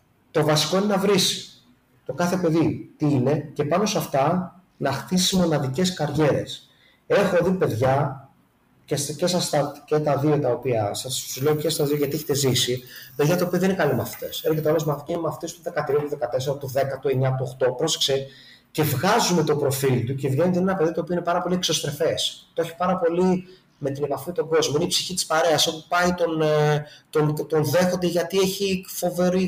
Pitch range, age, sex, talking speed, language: 145-180 Hz, 30-49, male, 190 wpm, Greek